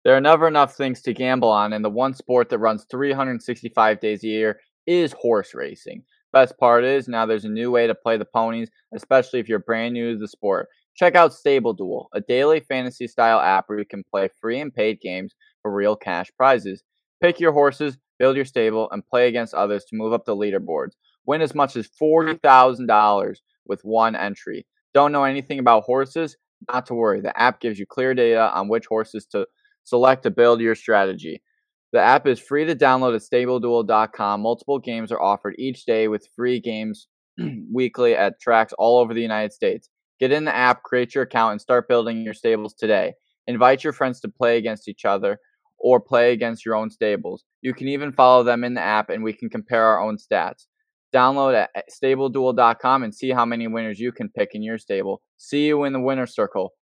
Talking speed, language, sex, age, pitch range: 205 wpm, English, male, 20-39, 110-135 Hz